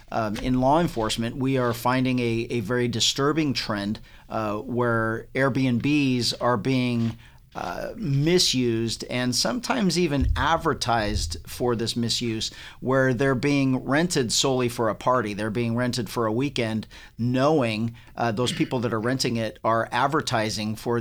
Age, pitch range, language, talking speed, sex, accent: 50-69, 115-135 Hz, English, 145 wpm, male, American